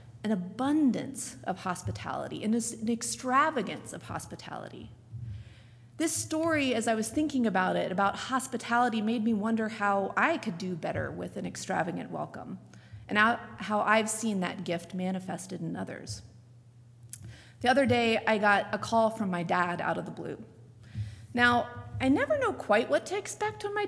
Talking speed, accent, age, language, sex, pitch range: 155 wpm, American, 30-49, English, female, 175-265 Hz